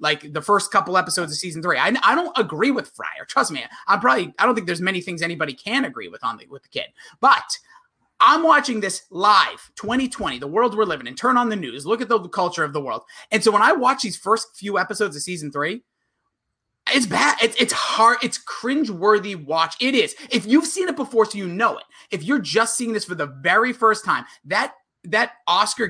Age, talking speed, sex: 30-49, 230 wpm, male